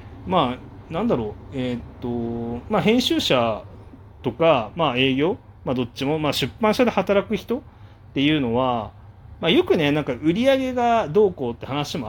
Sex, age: male, 40-59